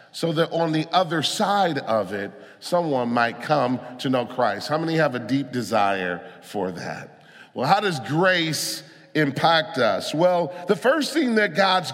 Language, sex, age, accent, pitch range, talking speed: English, male, 40-59, American, 140-195 Hz, 170 wpm